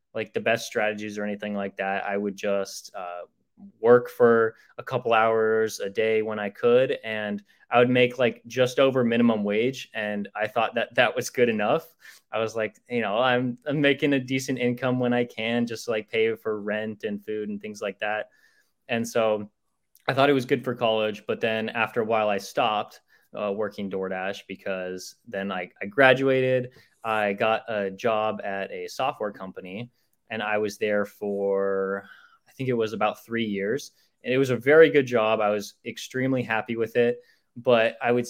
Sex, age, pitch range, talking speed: male, 20-39, 105-125 Hz, 195 wpm